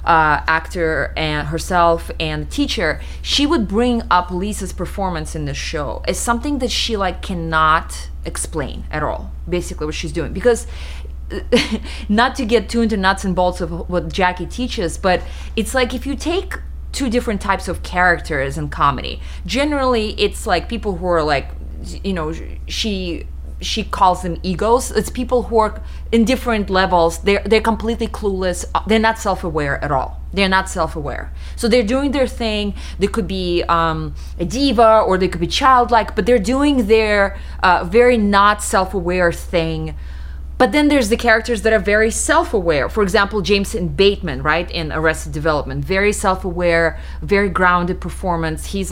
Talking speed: 165 wpm